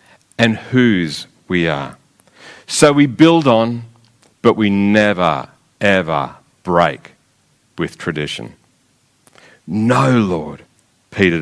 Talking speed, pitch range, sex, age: 95 wpm, 105-145 Hz, male, 50-69